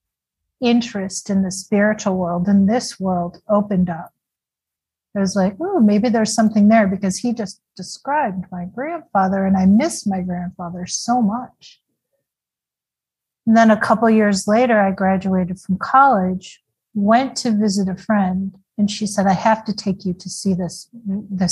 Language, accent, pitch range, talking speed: English, American, 190-225 Hz, 160 wpm